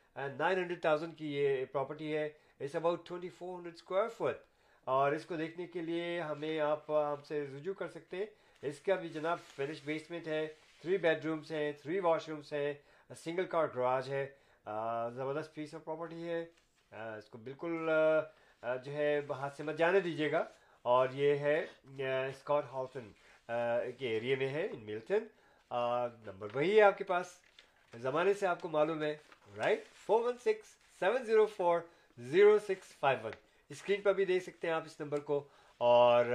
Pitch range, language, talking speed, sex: 130-165 Hz, Urdu, 175 wpm, male